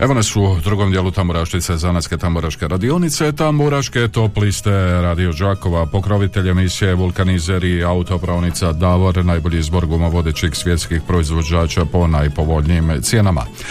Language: Croatian